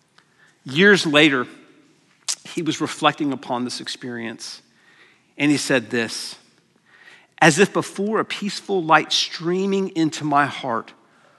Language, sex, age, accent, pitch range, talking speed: English, male, 50-69, American, 135-185 Hz, 115 wpm